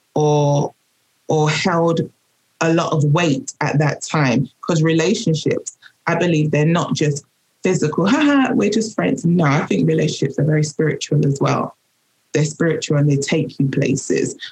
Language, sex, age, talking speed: English, female, 20-39, 155 wpm